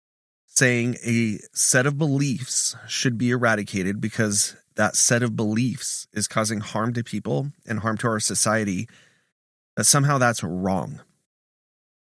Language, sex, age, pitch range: English, male, 30-49, 105-125 Hz